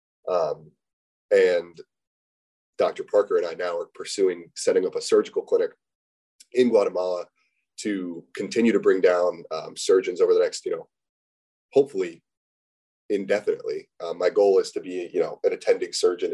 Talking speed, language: 150 wpm, English